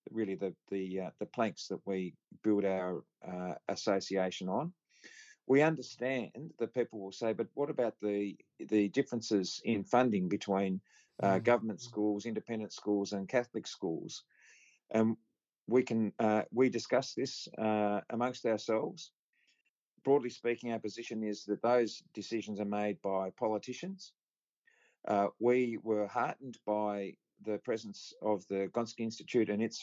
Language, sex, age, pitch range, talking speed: English, male, 50-69, 100-115 Hz, 145 wpm